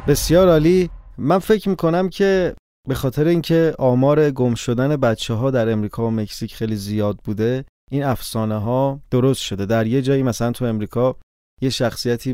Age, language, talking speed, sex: 30-49, Persian, 170 wpm, male